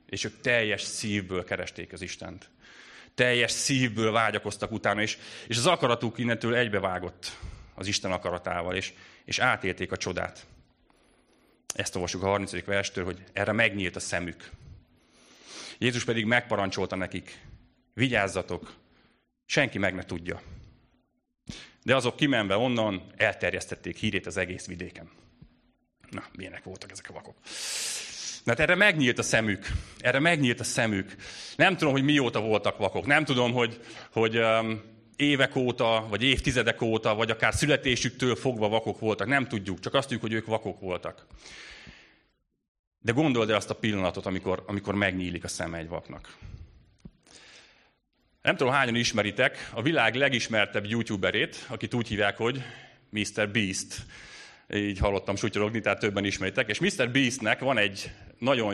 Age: 30-49